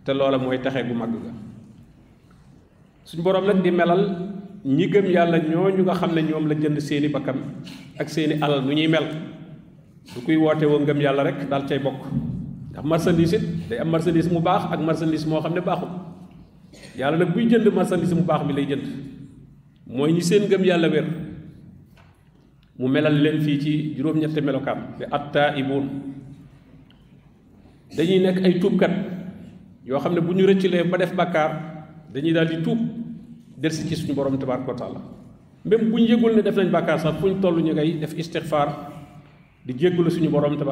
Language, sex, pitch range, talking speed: French, male, 140-175 Hz, 45 wpm